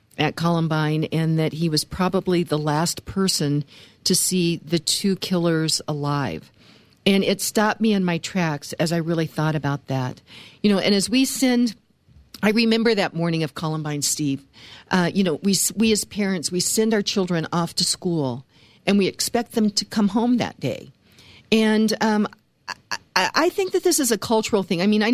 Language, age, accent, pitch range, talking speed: English, 50-69, American, 175-230 Hz, 190 wpm